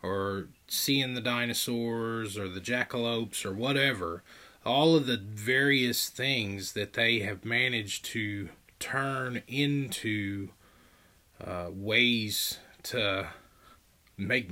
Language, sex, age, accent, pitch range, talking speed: English, male, 30-49, American, 100-135 Hz, 105 wpm